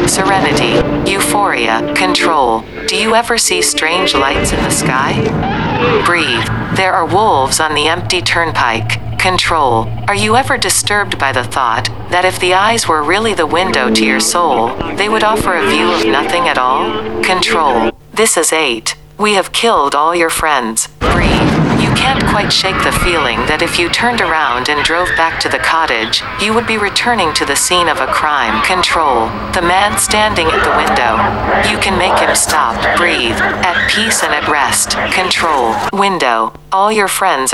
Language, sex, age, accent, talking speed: English, female, 40-59, American, 175 wpm